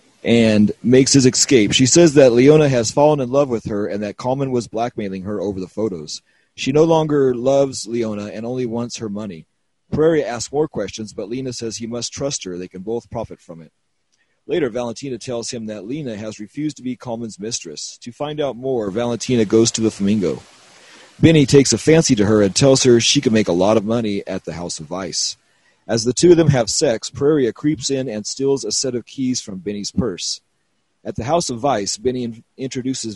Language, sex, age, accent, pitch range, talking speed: English, male, 30-49, American, 105-135 Hz, 215 wpm